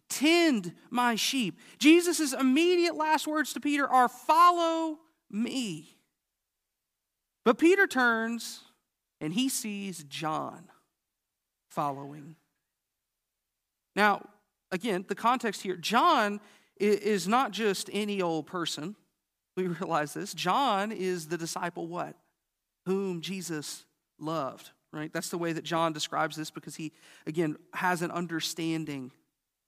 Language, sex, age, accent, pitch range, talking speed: English, male, 40-59, American, 165-235 Hz, 115 wpm